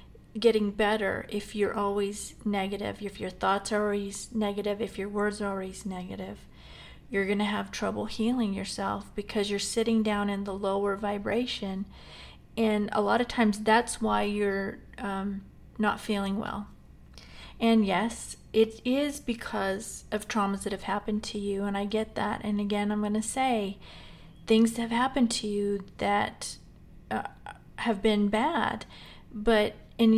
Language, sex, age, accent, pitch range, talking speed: English, female, 40-59, American, 195-225 Hz, 160 wpm